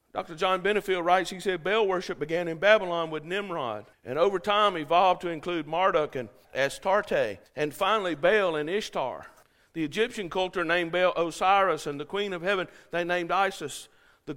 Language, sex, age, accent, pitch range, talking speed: English, male, 50-69, American, 170-210 Hz, 175 wpm